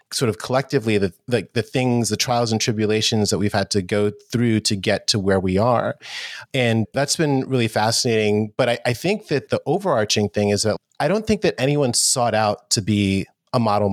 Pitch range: 105-130 Hz